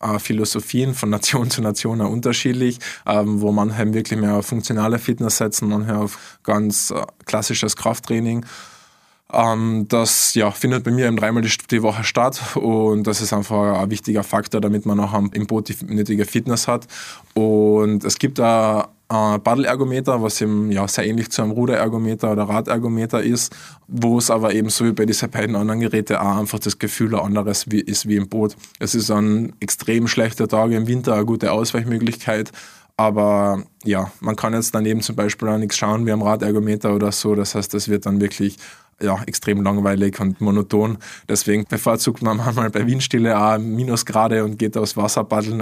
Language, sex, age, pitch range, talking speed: German, male, 20-39, 105-115 Hz, 180 wpm